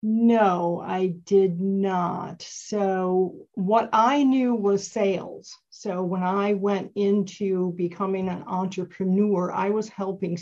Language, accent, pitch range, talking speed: English, American, 185-230 Hz, 120 wpm